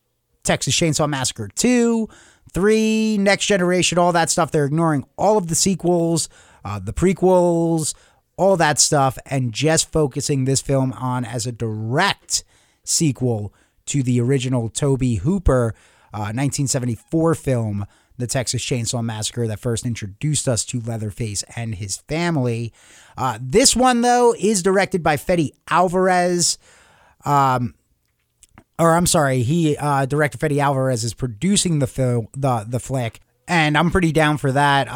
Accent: American